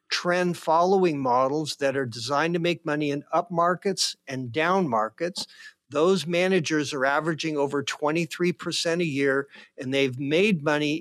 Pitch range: 145-180 Hz